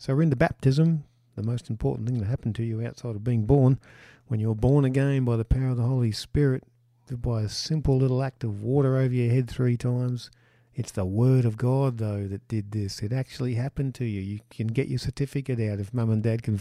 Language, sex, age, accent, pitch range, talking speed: English, male, 50-69, Australian, 105-125 Hz, 230 wpm